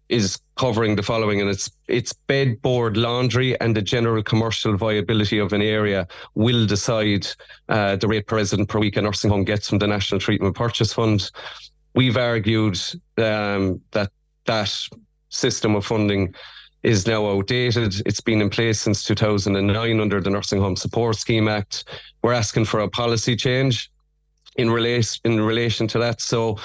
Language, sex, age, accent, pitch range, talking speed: English, male, 30-49, Irish, 105-115 Hz, 165 wpm